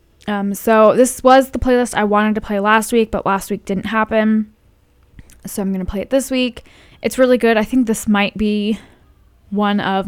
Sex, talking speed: female, 210 wpm